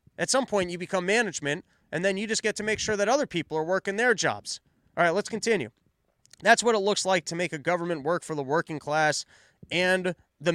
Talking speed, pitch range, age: 235 wpm, 150-205 Hz, 30-49